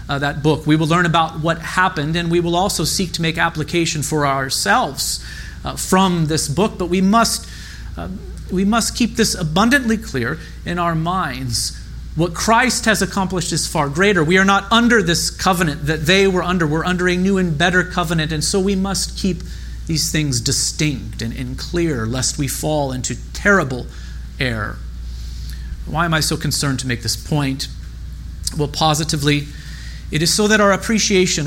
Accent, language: American, English